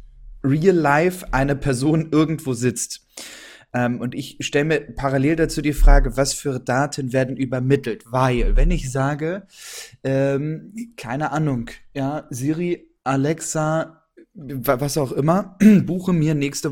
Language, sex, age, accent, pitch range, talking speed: German, male, 10-29, German, 130-155 Hz, 125 wpm